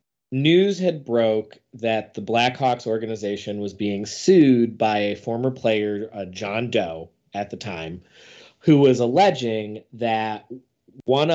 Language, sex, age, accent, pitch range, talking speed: English, male, 30-49, American, 110-135 Hz, 130 wpm